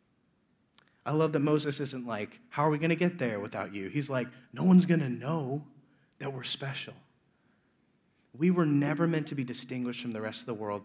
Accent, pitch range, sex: American, 110-150 Hz, male